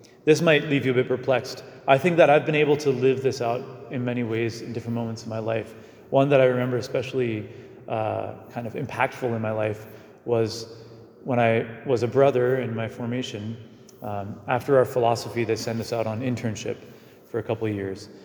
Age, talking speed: 30-49, 205 wpm